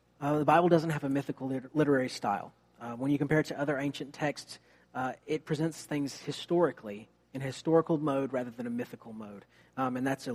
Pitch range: 120-165 Hz